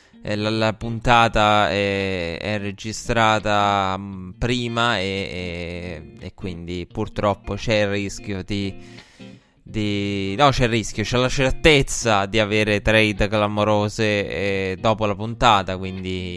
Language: Italian